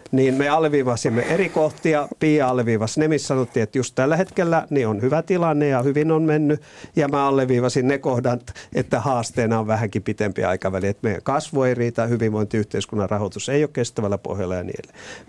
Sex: male